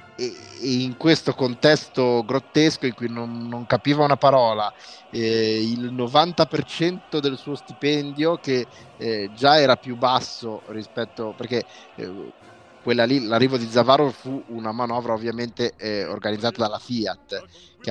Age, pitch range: 30-49, 105-125 Hz